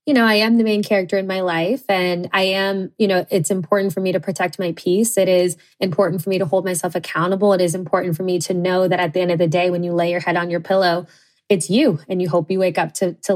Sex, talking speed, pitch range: female, 290 wpm, 175-210 Hz